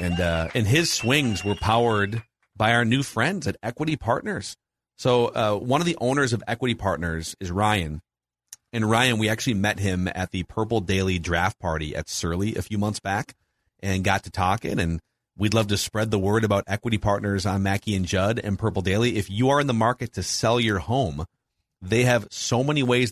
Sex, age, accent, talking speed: male, 40-59, American, 210 wpm